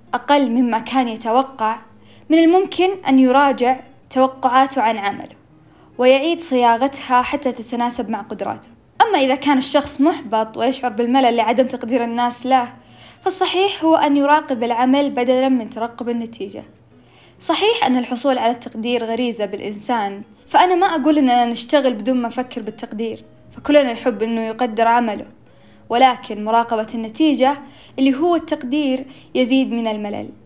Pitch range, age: 230-285 Hz, 20-39